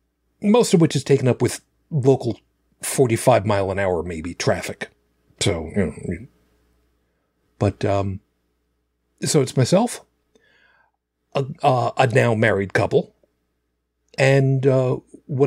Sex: male